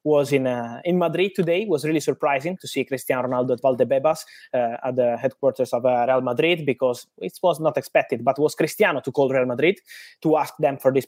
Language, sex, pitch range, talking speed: English, male, 130-155 Hz, 220 wpm